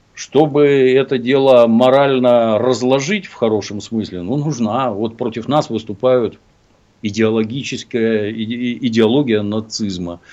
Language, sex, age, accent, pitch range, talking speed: Russian, male, 50-69, native, 95-125 Hz, 100 wpm